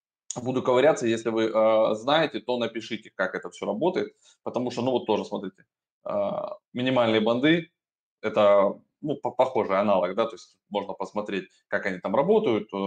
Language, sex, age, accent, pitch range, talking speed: Russian, male, 20-39, native, 105-140 Hz, 160 wpm